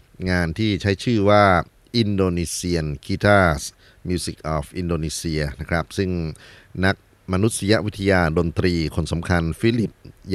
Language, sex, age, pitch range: Thai, male, 30-49, 80-100 Hz